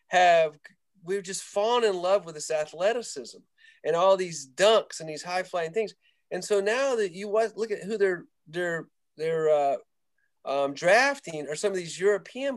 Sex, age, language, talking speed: male, 40-59, English, 175 wpm